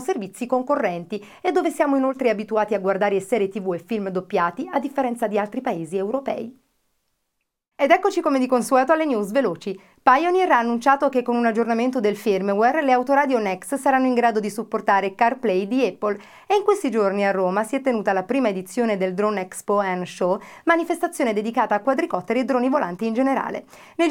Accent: native